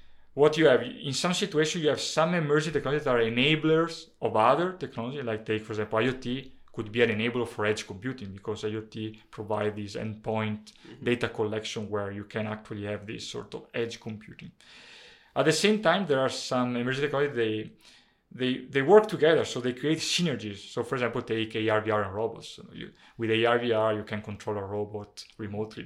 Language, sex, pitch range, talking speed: English, male, 110-145 Hz, 180 wpm